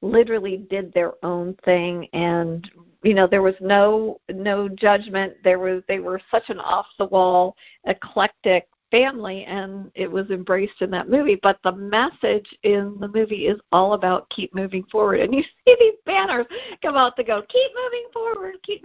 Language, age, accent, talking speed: English, 50-69, American, 170 wpm